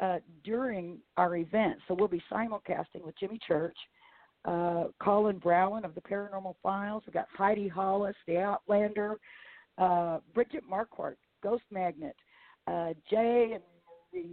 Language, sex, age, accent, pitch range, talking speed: English, female, 50-69, American, 175-205 Hz, 140 wpm